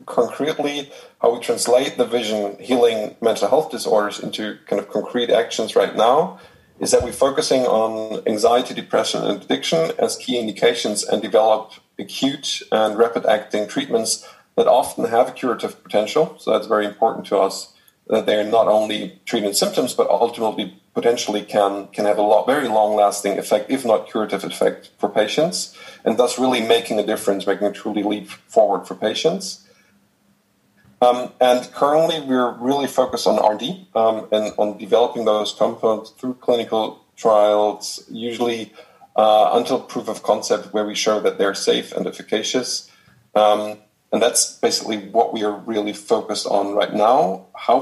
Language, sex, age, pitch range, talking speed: English, male, 40-59, 105-125 Hz, 160 wpm